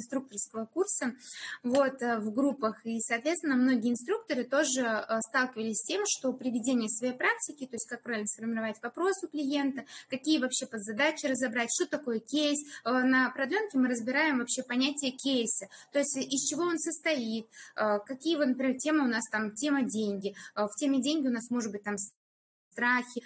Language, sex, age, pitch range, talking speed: Russian, female, 20-39, 230-280 Hz, 160 wpm